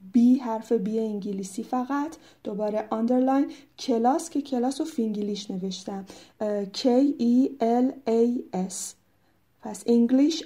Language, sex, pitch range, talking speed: Persian, female, 215-245 Hz, 110 wpm